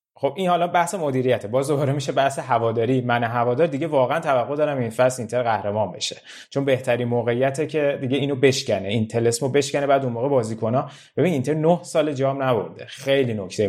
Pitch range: 120-165 Hz